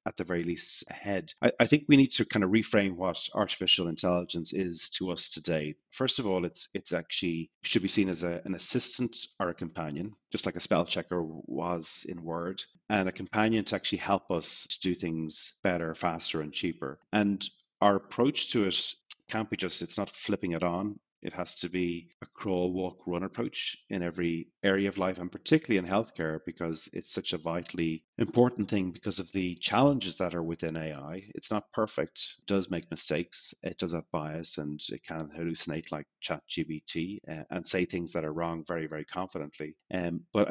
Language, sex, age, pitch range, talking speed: English, male, 30-49, 80-95 Hz, 195 wpm